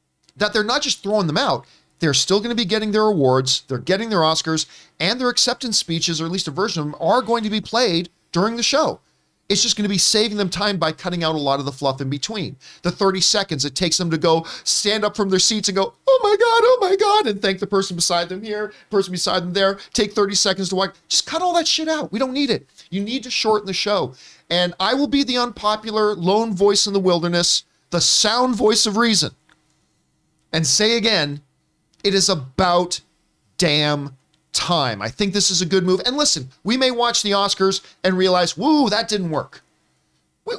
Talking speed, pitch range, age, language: 230 wpm, 165-225 Hz, 40-59, English